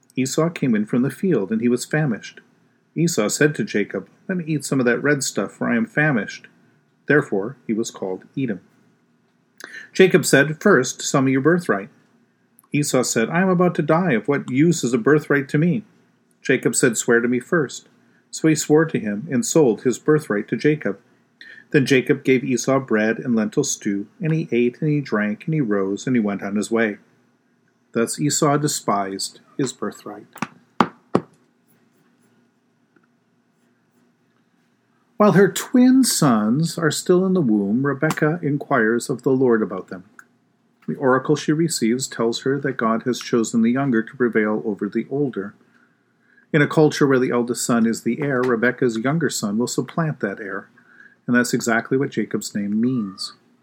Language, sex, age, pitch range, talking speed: English, male, 40-59, 115-160 Hz, 175 wpm